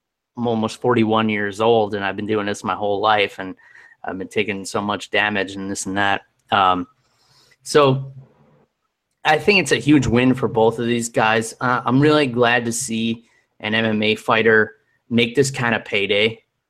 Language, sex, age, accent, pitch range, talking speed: English, male, 20-39, American, 110-125 Hz, 185 wpm